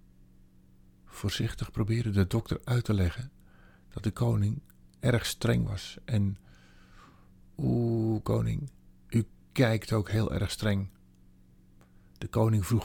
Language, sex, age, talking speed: Dutch, male, 50-69, 115 wpm